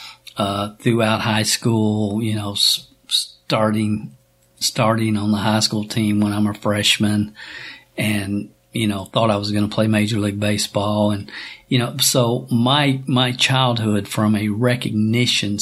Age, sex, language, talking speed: 50-69, male, English, 155 wpm